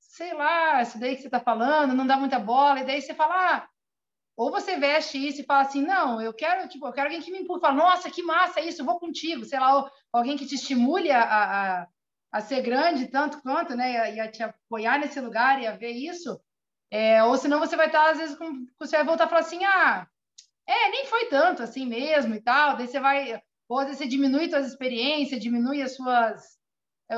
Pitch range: 235-290 Hz